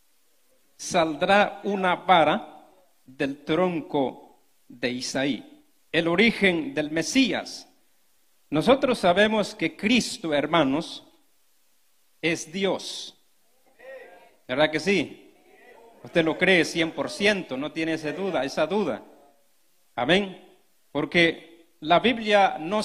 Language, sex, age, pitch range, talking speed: Spanish, male, 40-59, 165-220 Hz, 95 wpm